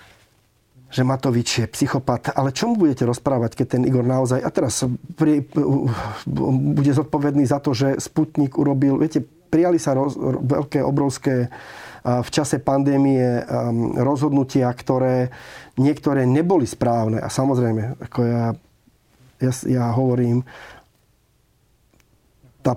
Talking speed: 115 wpm